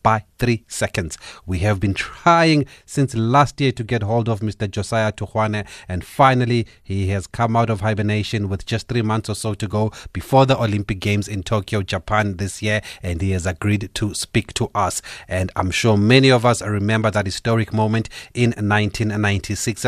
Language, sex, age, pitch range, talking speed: English, male, 30-49, 100-120 Hz, 185 wpm